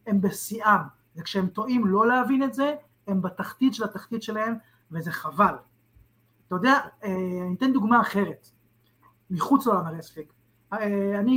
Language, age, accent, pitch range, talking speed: Hebrew, 30-49, native, 185-265 Hz, 135 wpm